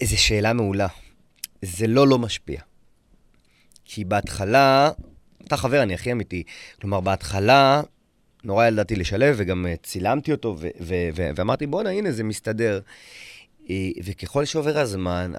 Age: 30-49